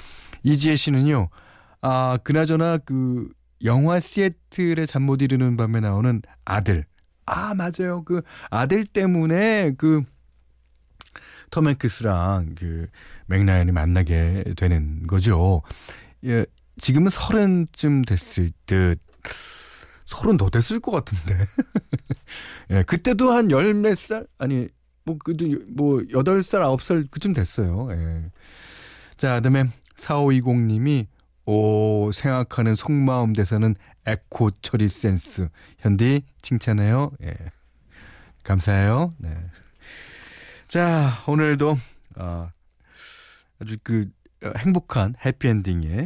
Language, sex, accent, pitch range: Korean, male, native, 90-145 Hz